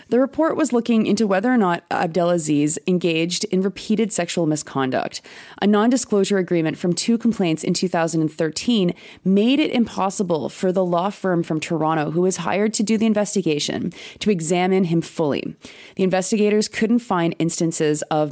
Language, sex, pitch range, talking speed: English, female, 155-200 Hz, 155 wpm